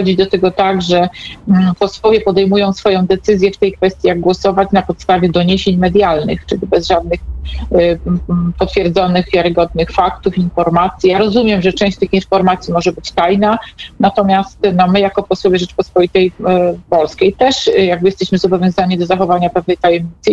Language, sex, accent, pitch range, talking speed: Polish, female, native, 180-210 Hz, 145 wpm